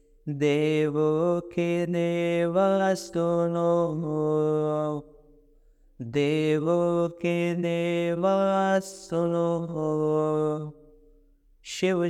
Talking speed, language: 55 wpm, Hindi